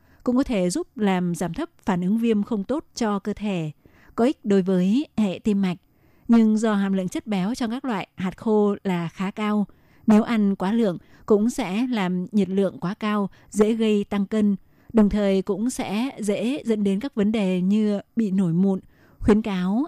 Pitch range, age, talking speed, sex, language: 190-220 Hz, 20-39, 200 wpm, female, Vietnamese